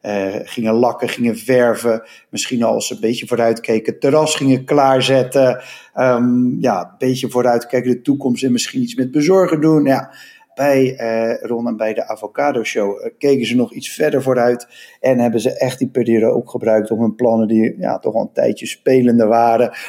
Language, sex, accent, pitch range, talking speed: Dutch, male, Dutch, 115-130 Hz, 190 wpm